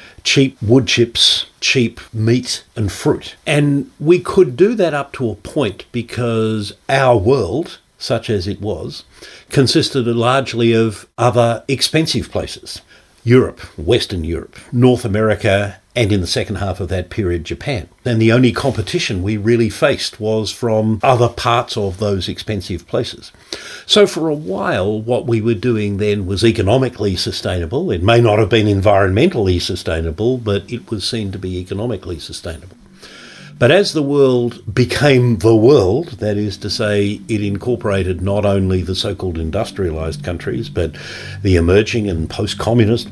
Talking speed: 150 wpm